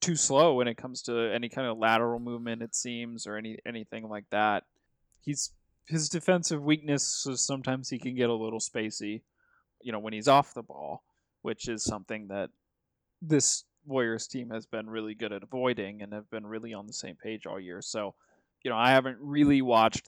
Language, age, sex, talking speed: English, 20-39, male, 200 wpm